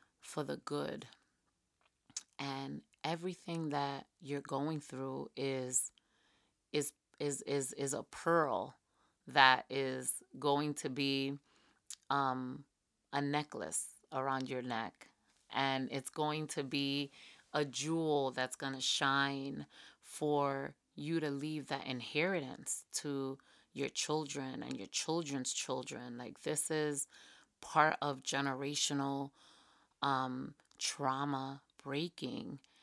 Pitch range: 135-155 Hz